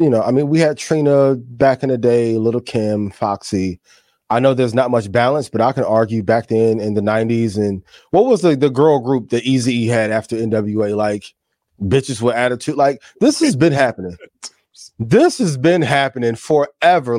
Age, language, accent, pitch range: 20-39, English, American, 110-135 Hz